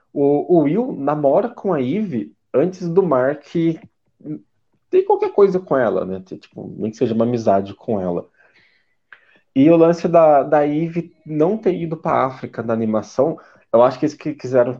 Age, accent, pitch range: 20-39, Brazilian, 110-160 Hz